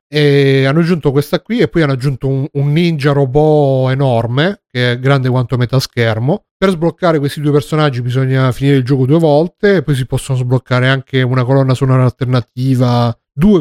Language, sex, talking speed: Italian, male, 185 wpm